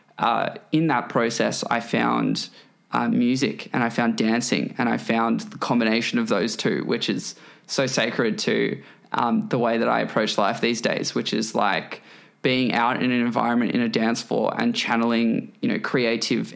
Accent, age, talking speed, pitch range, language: Australian, 20-39, 185 wpm, 120-165 Hz, English